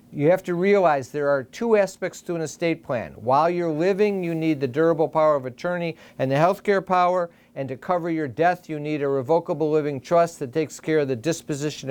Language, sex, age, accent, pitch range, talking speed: English, male, 50-69, American, 150-175 Hz, 220 wpm